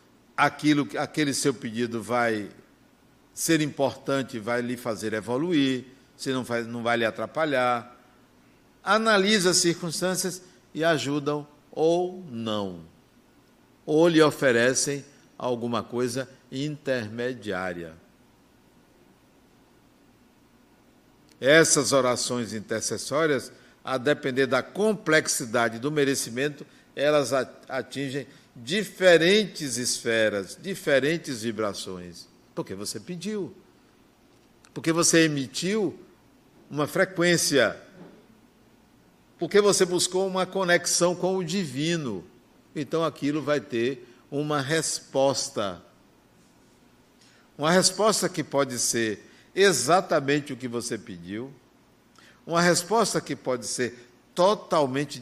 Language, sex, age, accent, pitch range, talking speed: Portuguese, male, 60-79, Brazilian, 120-165 Hz, 90 wpm